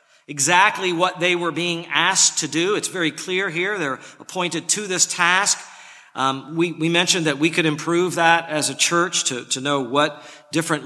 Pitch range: 140-175 Hz